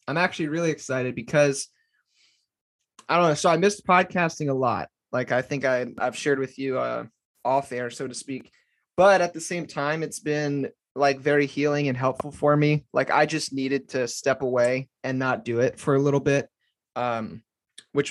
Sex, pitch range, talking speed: male, 125-145 Hz, 195 wpm